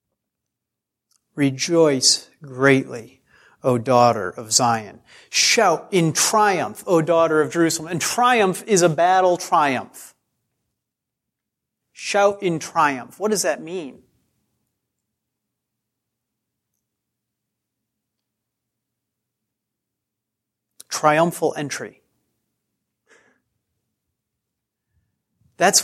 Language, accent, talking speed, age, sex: English, American, 65 wpm, 40-59, male